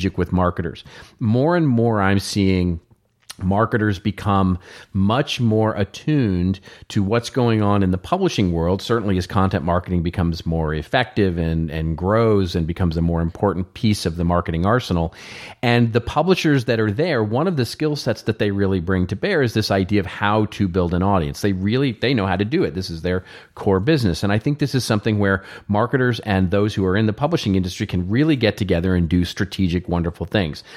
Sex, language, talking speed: male, English, 205 wpm